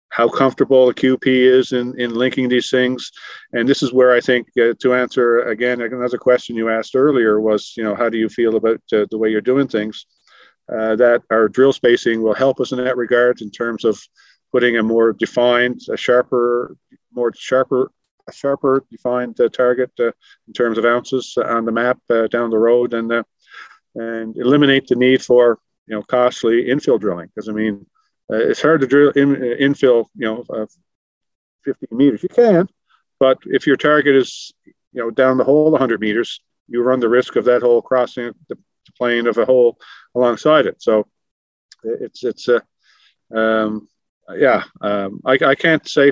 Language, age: English, 50-69